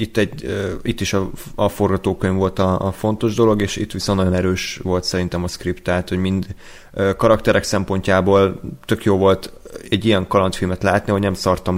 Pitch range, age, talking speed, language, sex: 90-100 Hz, 30-49, 175 wpm, Hungarian, male